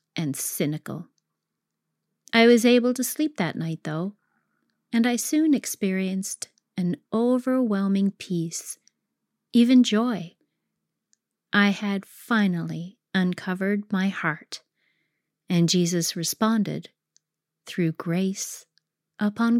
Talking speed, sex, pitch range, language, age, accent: 95 wpm, female, 165-215 Hz, English, 30-49, American